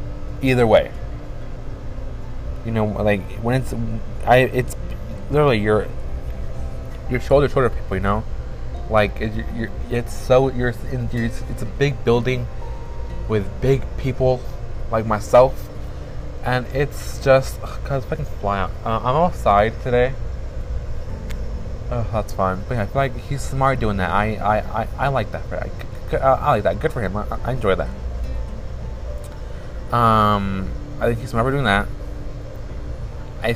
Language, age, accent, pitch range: English, 20-39, American, 95-125 Hz